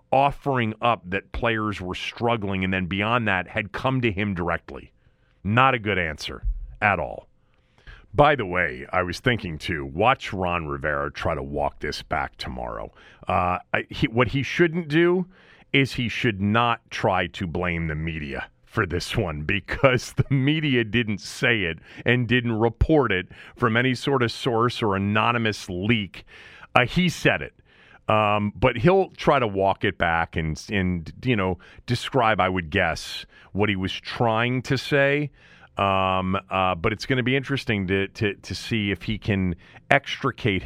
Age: 40-59